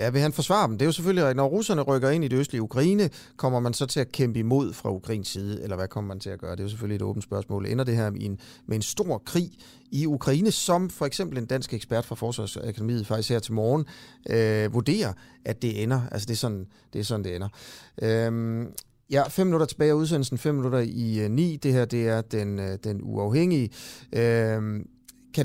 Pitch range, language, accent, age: 115-150 Hz, Danish, native, 30-49